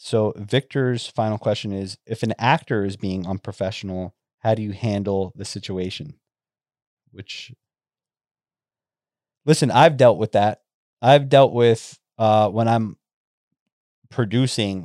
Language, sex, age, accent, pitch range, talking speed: English, male, 20-39, American, 95-115 Hz, 120 wpm